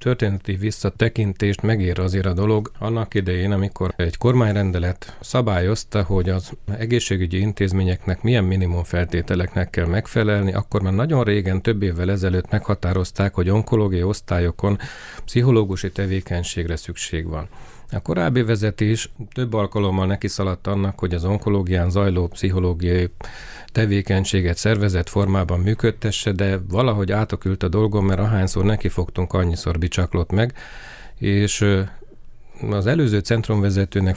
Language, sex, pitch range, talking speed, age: Hungarian, male, 90-105 Hz, 115 wpm, 40-59